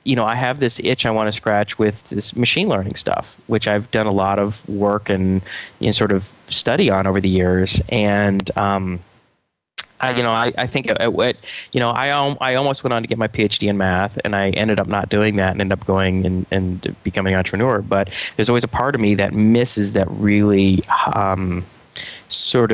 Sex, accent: male, American